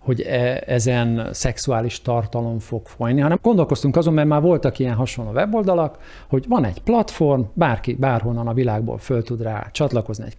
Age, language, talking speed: 50-69, Hungarian, 160 wpm